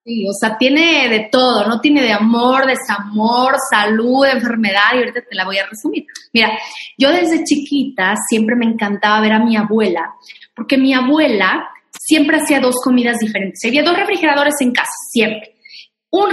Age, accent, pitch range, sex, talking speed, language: 20-39, Mexican, 220-290 Hz, female, 170 wpm, Spanish